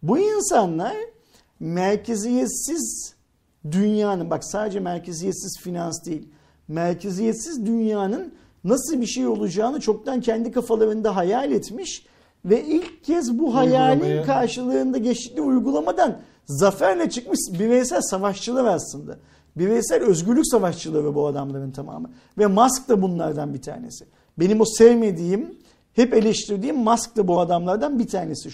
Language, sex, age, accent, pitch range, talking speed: Turkish, male, 50-69, native, 195-275 Hz, 120 wpm